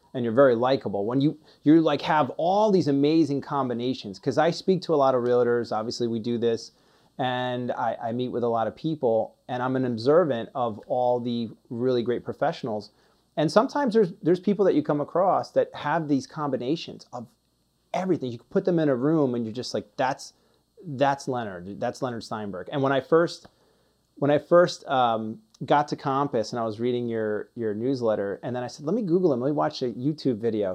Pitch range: 120-155 Hz